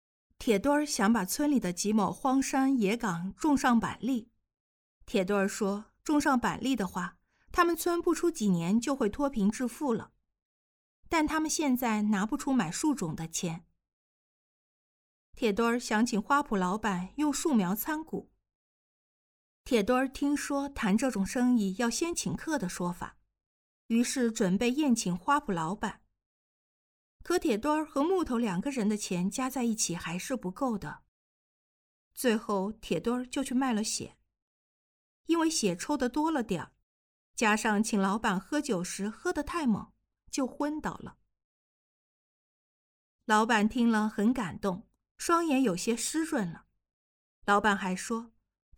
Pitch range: 195-280 Hz